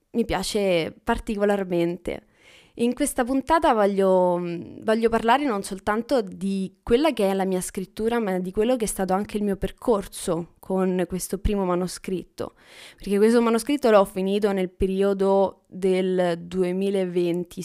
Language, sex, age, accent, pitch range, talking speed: Italian, female, 20-39, native, 180-210 Hz, 140 wpm